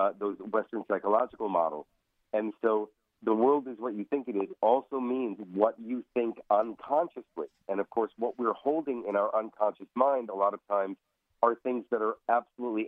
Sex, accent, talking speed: male, American, 185 wpm